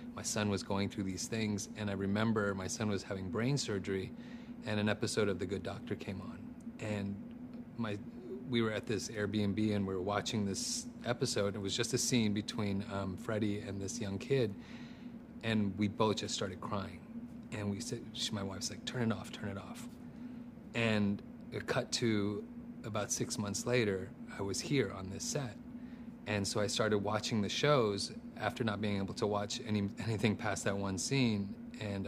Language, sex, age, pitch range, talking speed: English, male, 30-49, 100-125 Hz, 195 wpm